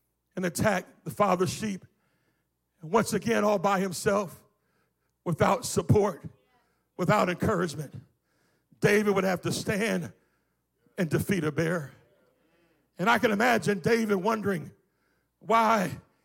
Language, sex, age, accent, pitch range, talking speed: English, male, 60-79, American, 170-225 Hz, 110 wpm